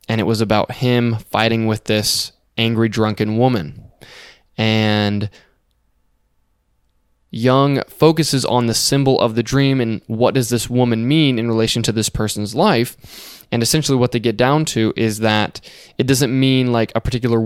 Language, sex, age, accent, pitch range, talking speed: English, male, 20-39, American, 110-125 Hz, 160 wpm